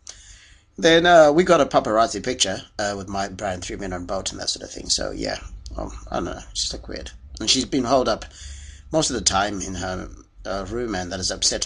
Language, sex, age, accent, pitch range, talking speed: English, male, 30-49, British, 90-125 Hz, 235 wpm